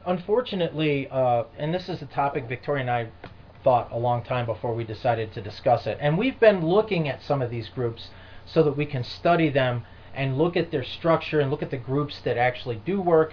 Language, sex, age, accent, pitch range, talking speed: English, male, 30-49, American, 115-155 Hz, 220 wpm